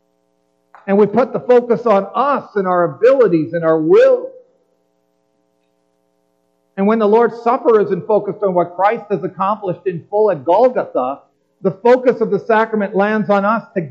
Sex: male